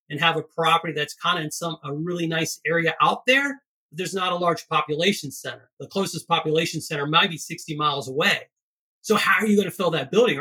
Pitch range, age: 155-190 Hz, 30-49